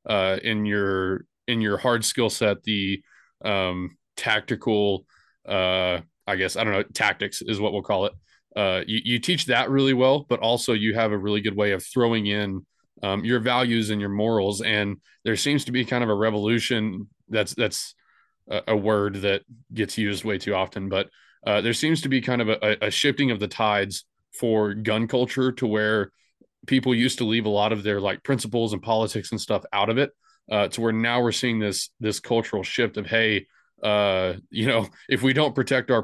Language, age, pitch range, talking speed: English, 20-39, 100-120 Hz, 205 wpm